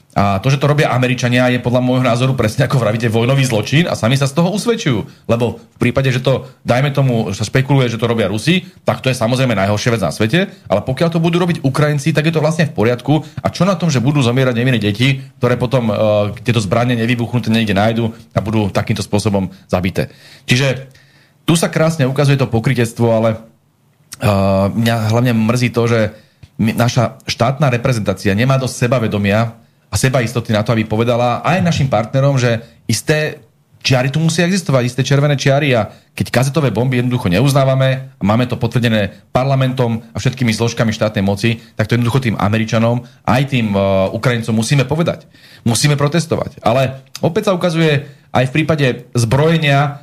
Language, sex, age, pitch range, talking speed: Slovak, male, 40-59, 115-140 Hz, 185 wpm